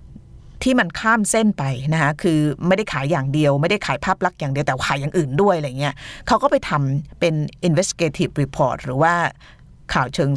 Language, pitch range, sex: Thai, 145-195 Hz, female